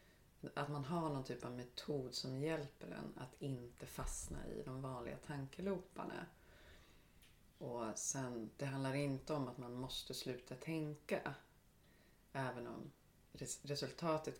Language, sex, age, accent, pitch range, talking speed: Swedish, female, 30-49, native, 130-160 Hz, 130 wpm